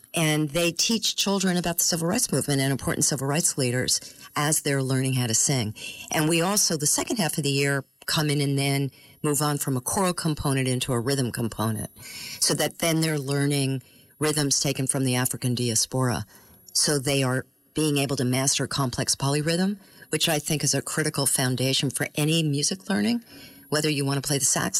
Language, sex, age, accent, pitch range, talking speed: English, female, 50-69, American, 130-155 Hz, 195 wpm